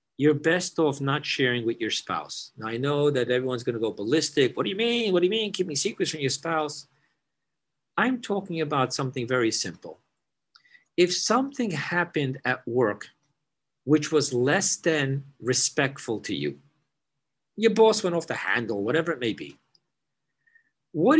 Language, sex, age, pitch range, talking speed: English, male, 50-69, 125-170 Hz, 170 wpm